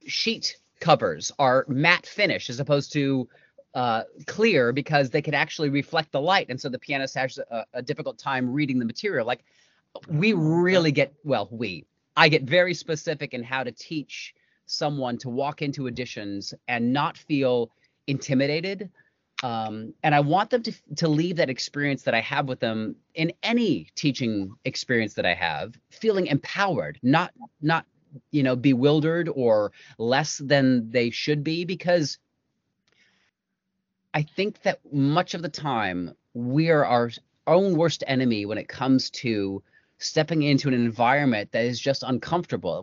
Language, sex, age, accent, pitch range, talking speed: English, male, 30-49, American, 120-155 Hz, 160 wpm